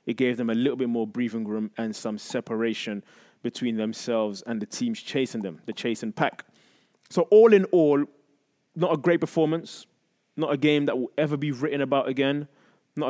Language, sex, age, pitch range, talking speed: English, male, 20-39, 125-160 Hz, 190 wpm